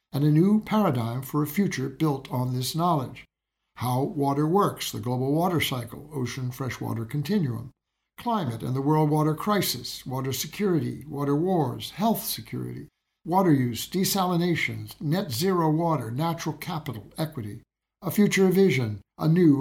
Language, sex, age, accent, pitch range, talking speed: English, male, 60-79, American, 135-185 Hz, 140 wpm